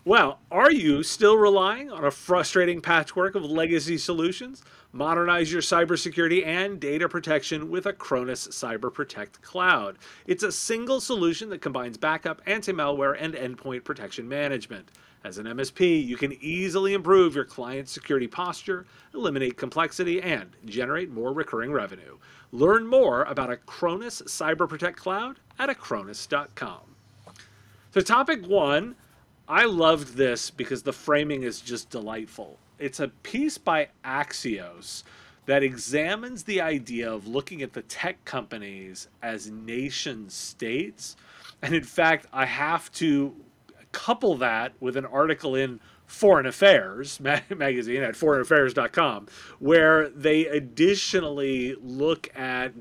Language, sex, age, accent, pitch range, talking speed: English, male, 40-59, American, 130-175 Hz, 125 wpm